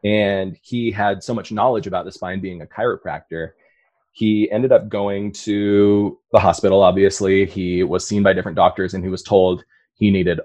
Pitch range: 95-110 Hz